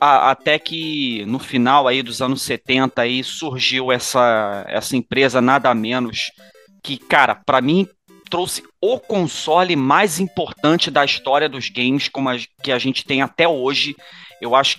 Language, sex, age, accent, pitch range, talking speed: Portuguese, male, 30-49, Brazilian, 130-190 Hz, 155 wpm